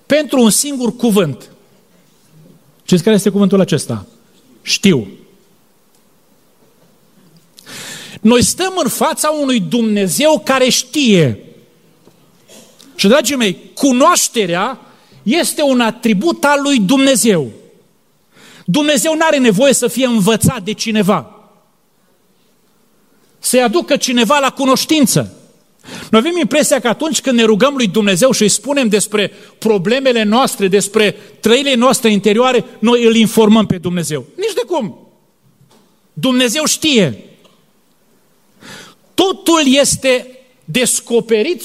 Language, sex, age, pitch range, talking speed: Romanian, male, 40-59, 210-275 Hz, 110 wpm